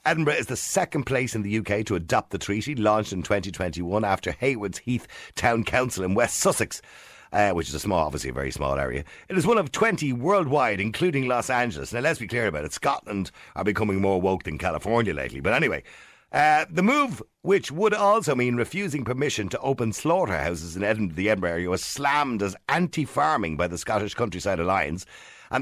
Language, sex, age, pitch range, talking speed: English, male, 50-69, 95-150 Hz, 200 wpm